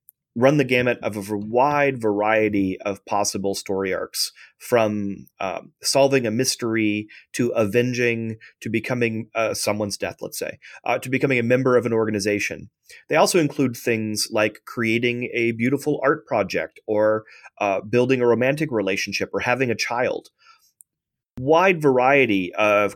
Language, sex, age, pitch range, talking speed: English, male, 30-49, 105-130 Hz, 145 wpm